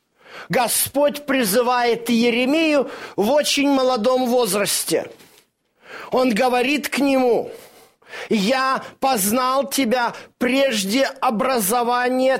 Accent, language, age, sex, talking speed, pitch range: native, Russian, 40-59, male, 75 wpm, 220-270 Hz